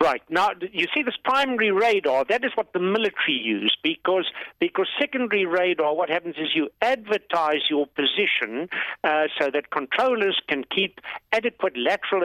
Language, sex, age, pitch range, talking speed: English, male, 60-79, 135-215 Hz, 155 wpm